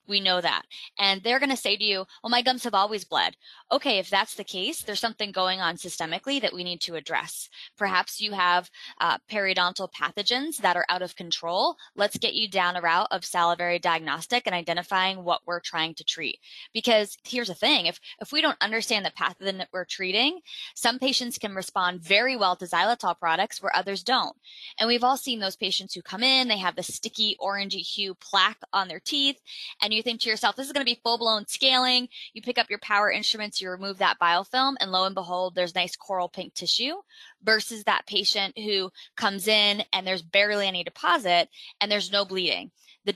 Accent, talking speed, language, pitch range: American, 210 wpm, English, 180-230 Hz